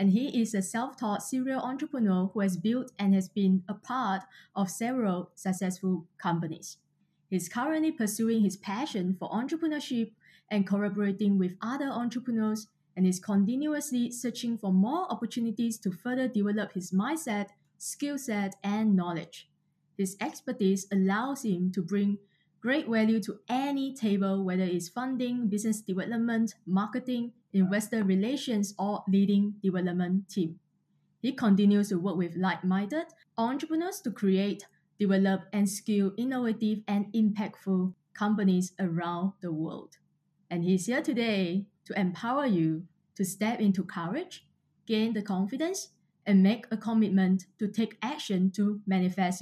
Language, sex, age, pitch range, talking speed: English, female, 20-39, 185-230 Hz, 135 wpm